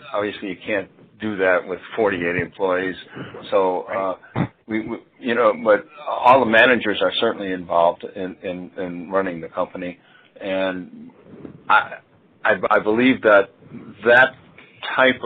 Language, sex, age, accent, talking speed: English, male, 60-79, American, 140 wpm